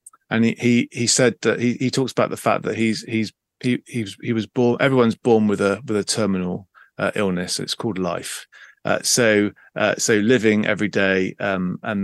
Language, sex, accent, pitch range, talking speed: English, male, British, 100-125 Hz, 200 wpm